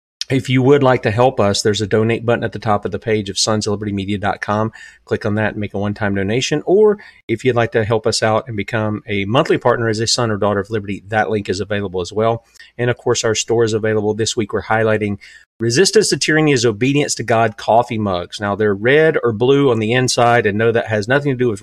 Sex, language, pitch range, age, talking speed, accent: male, English, 105-130 Hz, 40-59, 250 wpm, American